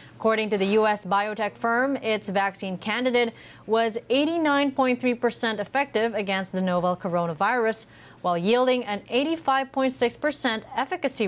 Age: 30-49